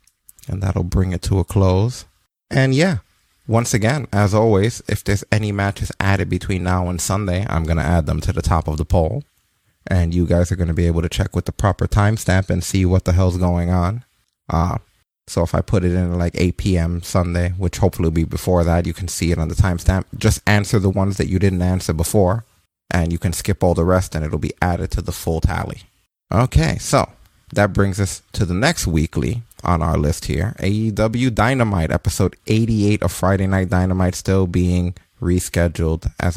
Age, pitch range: 30-49, 90-105 Hz